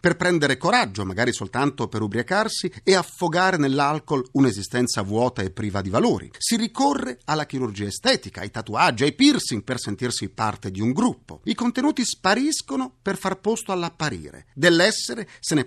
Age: 40-59